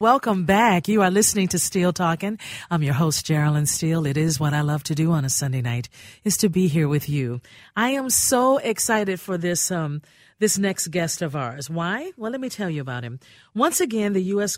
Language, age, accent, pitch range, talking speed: English, 50-69, American, 130-180 Hz, 225 wpm